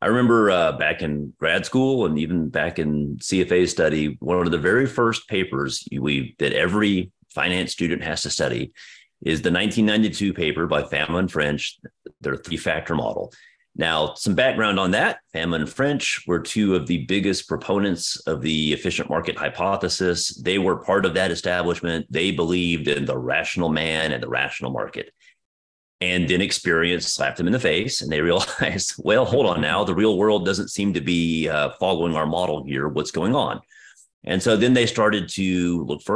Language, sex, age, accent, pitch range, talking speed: English, male, 30-49, American, 75-95 Hz, 185 wpm